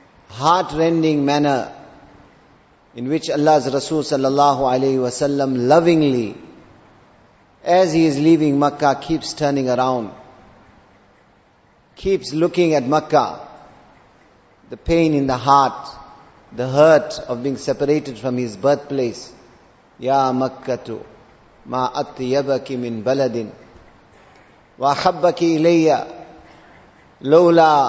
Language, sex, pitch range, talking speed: English, male, 130-165 Hz, 95 wpm